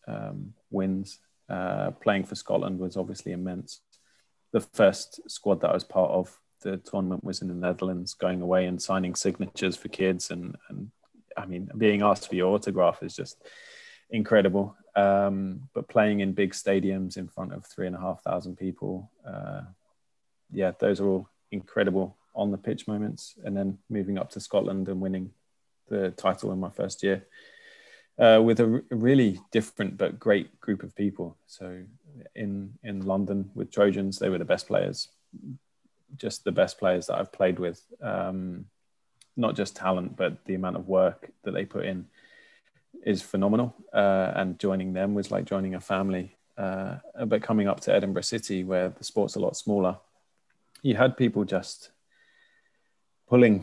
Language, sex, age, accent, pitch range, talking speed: English, male, 20-39, British, 95-105 Hz, 170 wpm